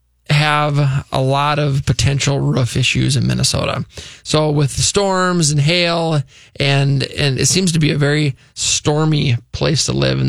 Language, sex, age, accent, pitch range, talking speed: English, male, 20-39, American, 130-150 Hz, 165 wpm